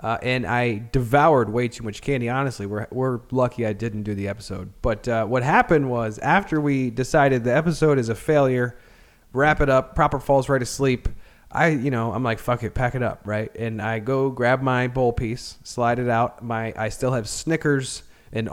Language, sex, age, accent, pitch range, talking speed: English, male, 20-39, American, 110-140 Hz, 205 wpm